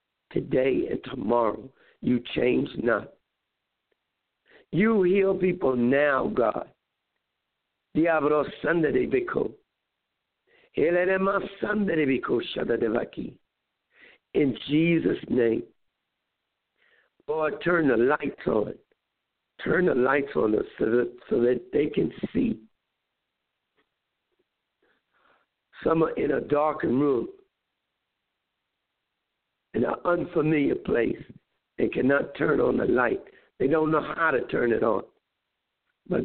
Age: 60-79